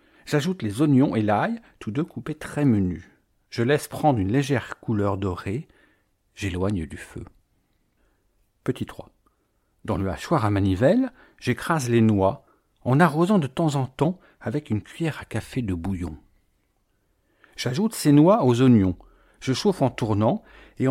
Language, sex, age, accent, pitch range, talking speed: French, male, 60-79, French, 100-150 Hz, 150 wpm